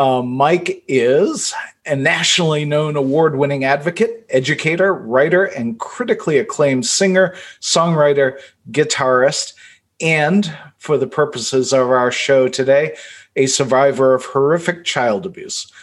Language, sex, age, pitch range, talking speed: English, male, 40-59, 130-165 Hz, 115 wpm